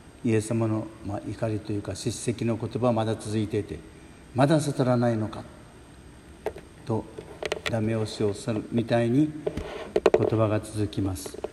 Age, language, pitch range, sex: 60-79, Japanese, 105-120 Hz, male